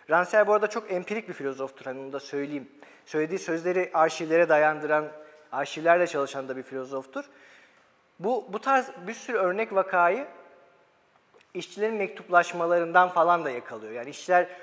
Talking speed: 135 wpm